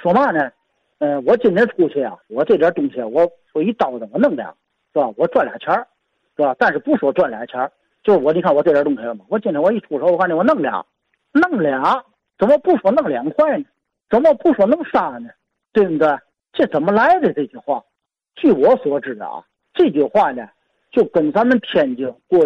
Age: 50-69